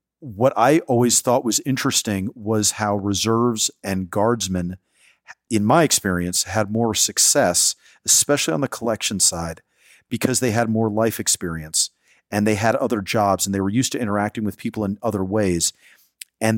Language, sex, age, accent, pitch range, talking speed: English, male, 40-59, American, 95-115 Hz, 165 wpm